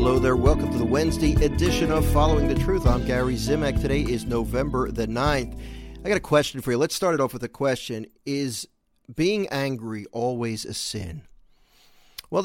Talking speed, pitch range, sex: 190 wpm, 120-150 Hz, male